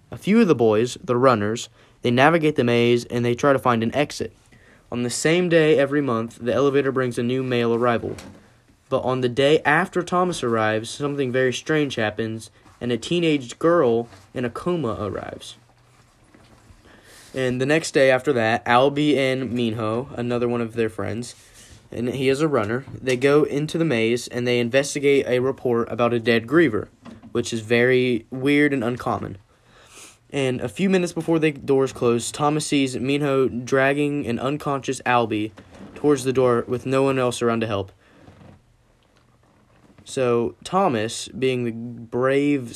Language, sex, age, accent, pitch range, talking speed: English, male, 10-29, American, 115-140 Hz, 165 wpm